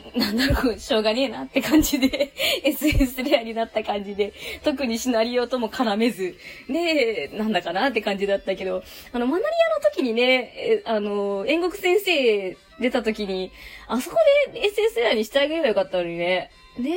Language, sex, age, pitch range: Japanese, female, 20-39, 200-310 Hz